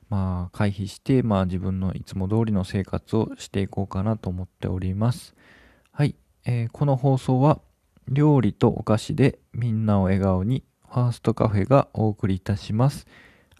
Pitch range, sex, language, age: 100-125 Hz, male, Japanese, 20-39